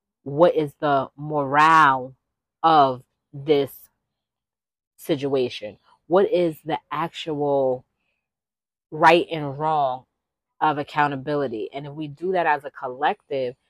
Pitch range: 135-155 Hz